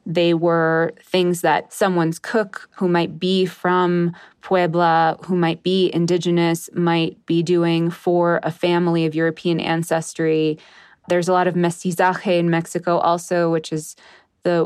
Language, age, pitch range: English, 20-39, 160-185 Hz